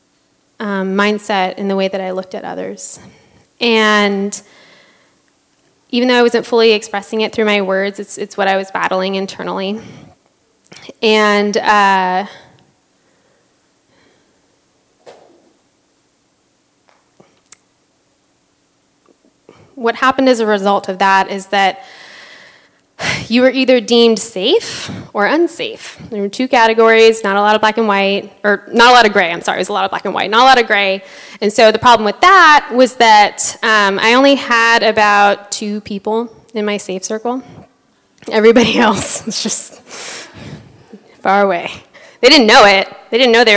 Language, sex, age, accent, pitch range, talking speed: English, female, 20-39, American, 200-235 Hz, 155 wpm